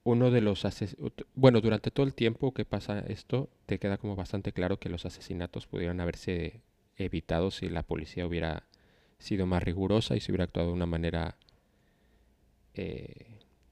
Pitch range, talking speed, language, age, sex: 85-105 Hz, 165 wpm, Spanish, 30-49, male